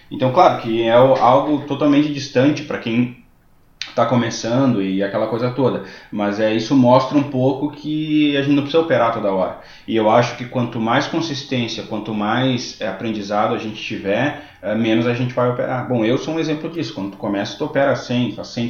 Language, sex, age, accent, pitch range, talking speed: English, male, 20-39, Brazilian, 110-140 Hz, 190 wpm